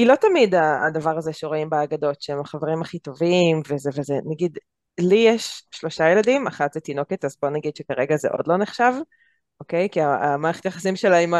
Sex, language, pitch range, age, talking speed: female, Hebrew, 155-200 Hz, 20-39, 185 wpm